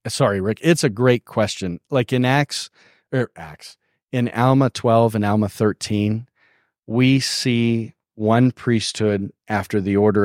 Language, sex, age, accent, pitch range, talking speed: English, male, 40-59, American, 110-135 Hz, 140 wpm